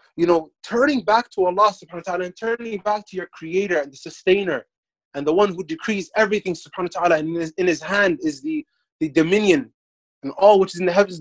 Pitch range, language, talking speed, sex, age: 165-210 Hz, English, 235 wpm, male, 20-39